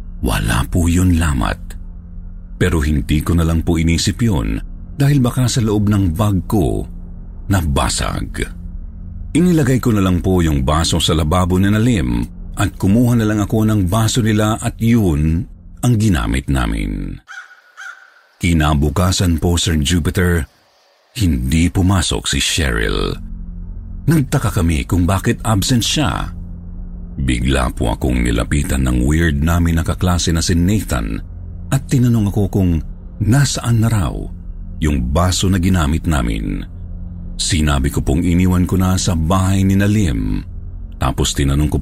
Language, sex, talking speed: Filipino, male, 135 wpm